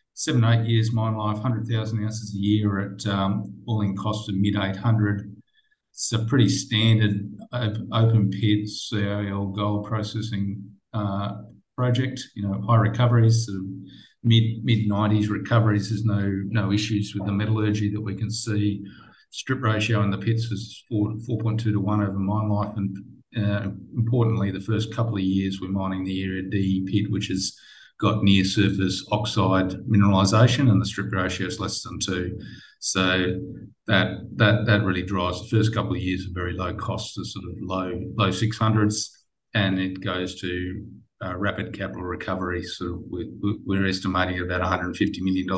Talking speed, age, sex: 160 wpm, 50-69, male